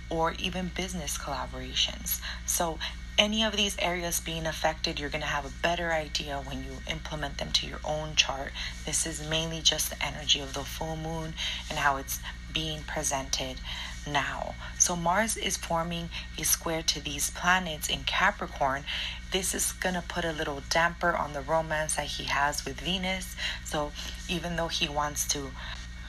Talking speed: 170 wpm